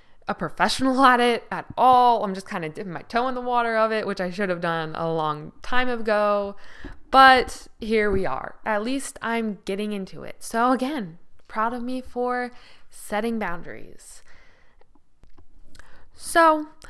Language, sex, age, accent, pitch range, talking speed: English, female, 10-29, American, 190-240 Hz, 165 wpm